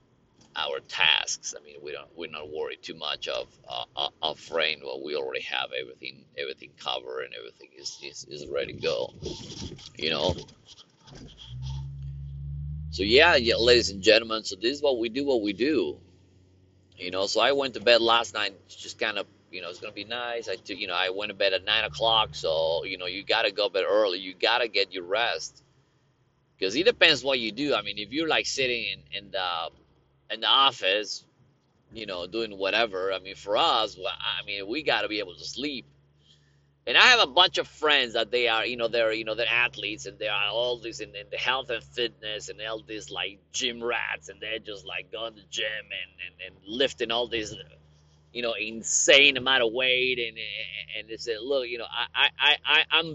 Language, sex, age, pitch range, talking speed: English, male, 30-49, 95-155 Hz, 215 wpm